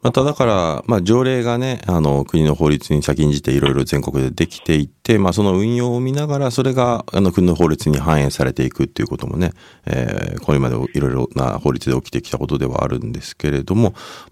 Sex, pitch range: male, 70-105 Hz